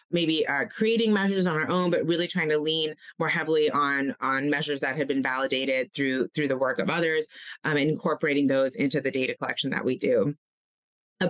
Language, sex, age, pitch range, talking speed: English, female, 20-39, 145-175 Hz, 200 wpm